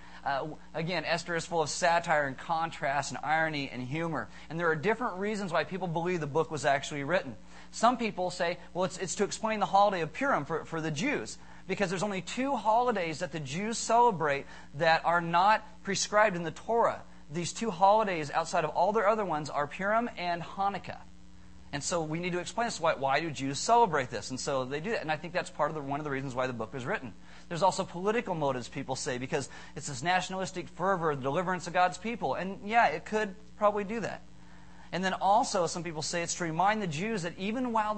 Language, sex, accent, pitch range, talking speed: English, male, American, 150-195 Hz, 225 wpm